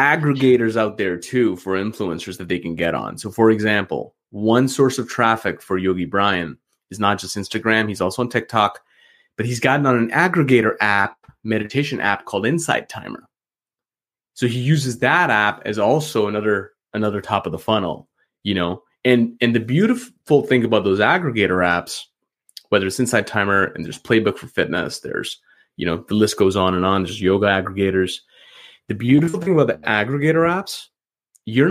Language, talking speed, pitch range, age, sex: English, 180 wpm, 95-125 Hz, 30-49, male